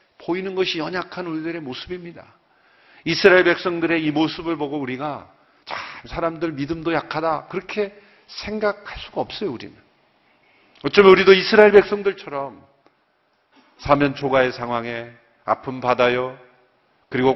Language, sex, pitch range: Korean, male, 130-195 Hz